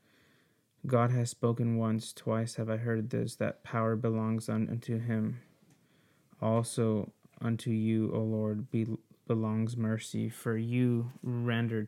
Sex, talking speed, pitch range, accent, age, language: male, 125 wpm, 110-120 Hz, American, 20-39, English